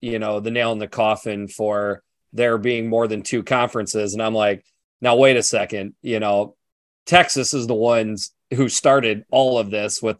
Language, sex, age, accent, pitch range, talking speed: English, male, 30-49, American, 110-125 Hz, 195 wpm